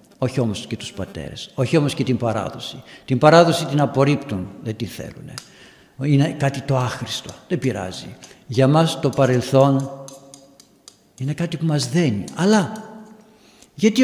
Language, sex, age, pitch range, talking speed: Greek, male, 60-79, 125-185 Hz, 145 wpm